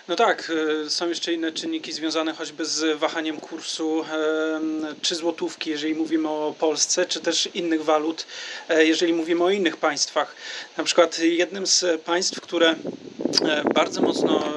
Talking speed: 140 wpm